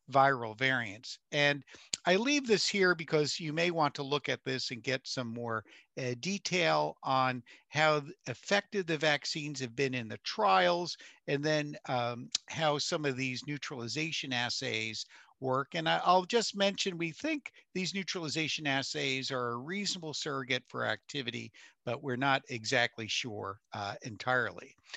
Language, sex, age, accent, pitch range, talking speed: English, male, 50-69, American, 125-165 Hz, 150 wpm